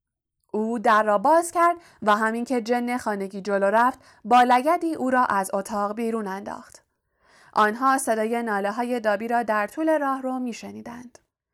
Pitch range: 205-245 Hz